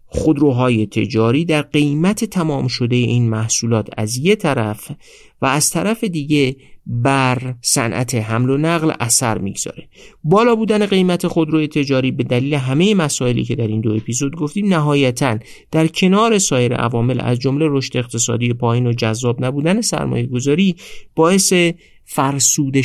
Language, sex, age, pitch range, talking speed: Persian, male, 50-69, 120-160 Hz, 140 wpm